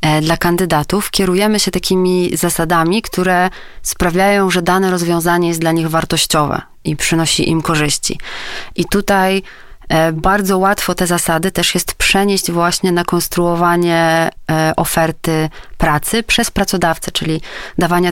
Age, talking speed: 30-49, 125 wpm